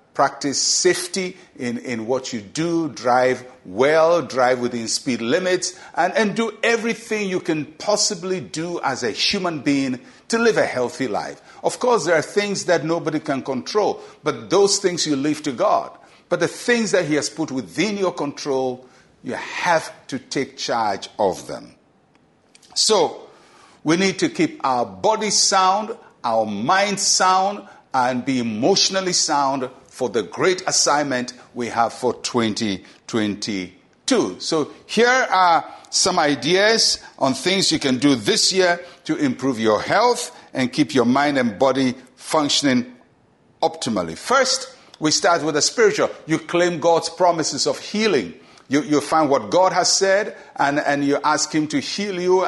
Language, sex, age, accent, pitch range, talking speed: English, male, 60-79, Nigerian, 135-195 Hz, 155 wpm